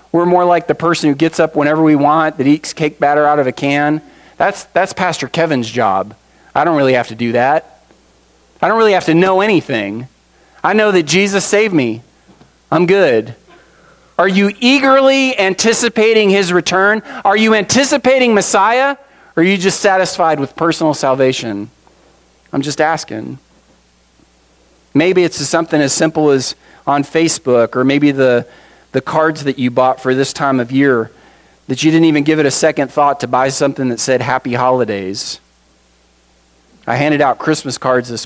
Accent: American